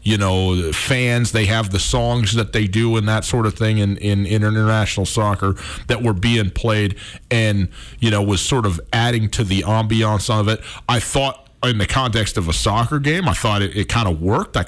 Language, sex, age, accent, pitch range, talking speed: English, male, 40-59, American, 105-135 Hz, 215 wpm